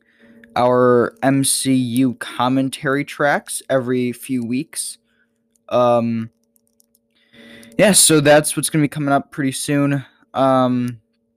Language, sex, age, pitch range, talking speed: English, male, 10-29, 115-130 Hz, 100 wpm